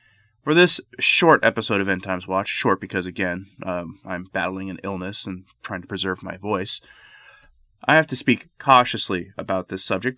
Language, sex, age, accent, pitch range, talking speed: English, male, 30-49, American, 95-120 Hz, 175 wpm